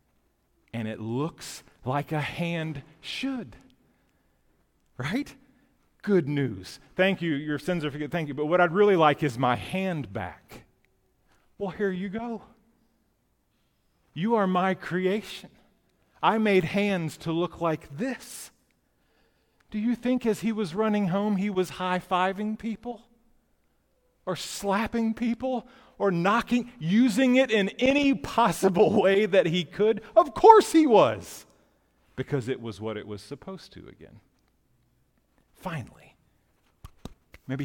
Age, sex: 40-59, male